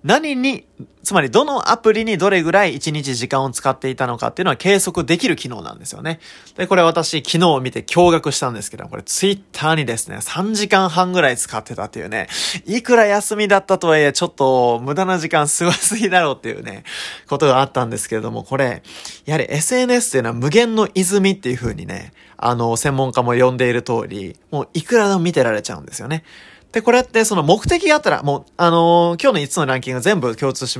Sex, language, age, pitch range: male, Japanese, 20-39, 125-200 Hz